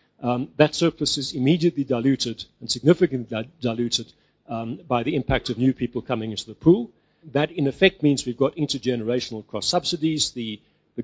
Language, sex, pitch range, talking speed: English, male, 115-140 Hz, 165 wpm